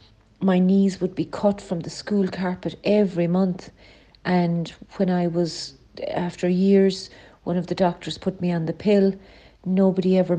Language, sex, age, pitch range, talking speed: English, female, 40-59, 165-185 Hz, 160 wpm